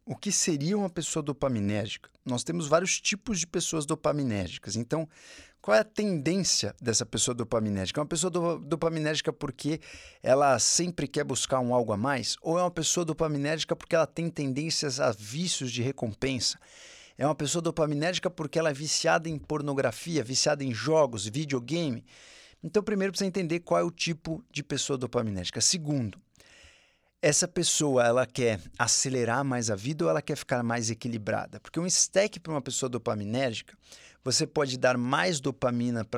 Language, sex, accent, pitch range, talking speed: Portuguese, male, Brazilian, 120-165 Hz, 165 wpm